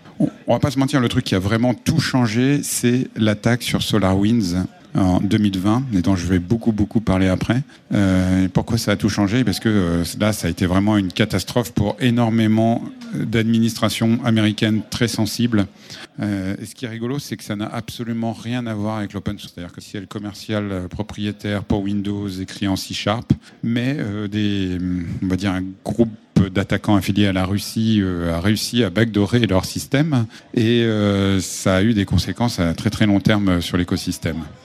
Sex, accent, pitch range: male, French, 100-115 Hz